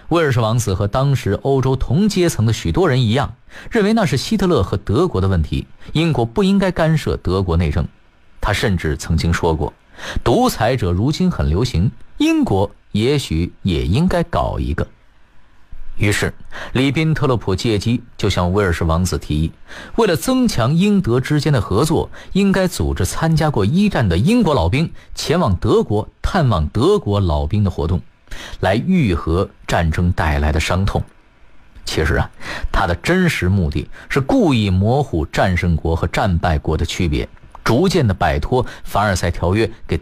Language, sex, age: Chinese, male, 50-69